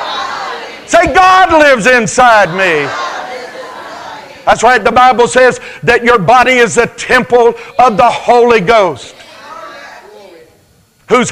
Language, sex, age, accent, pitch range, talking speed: English, male, 50-69, American, 240-300 Hz, 110 wpm